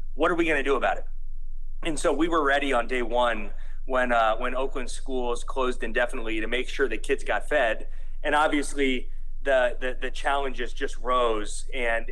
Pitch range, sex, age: 120-145 Hz, male, 30-49